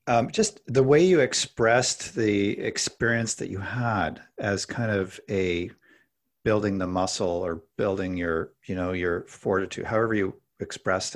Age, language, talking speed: 50-69, English, 150 wpm